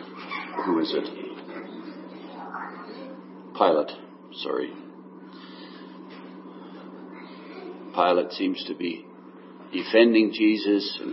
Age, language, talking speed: 60-79, English, 65 wpm